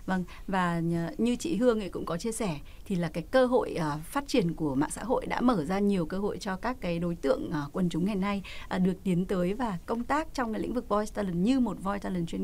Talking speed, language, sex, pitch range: 255 wpm, Vietnamese, female, 180-255 Hz